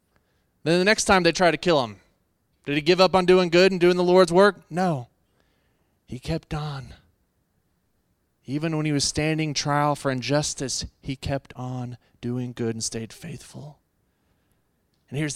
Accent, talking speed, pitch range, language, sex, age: American, 170 wpm, 115-145 Hz, English, male, 20-39